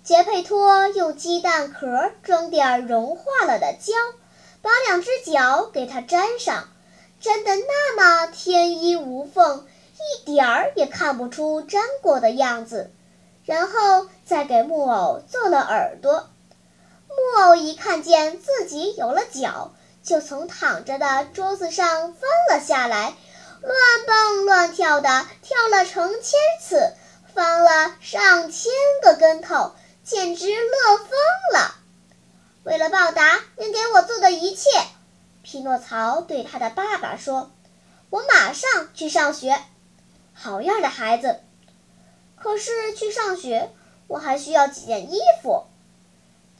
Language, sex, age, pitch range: Chinese, male, 10-29, 285-400 Hz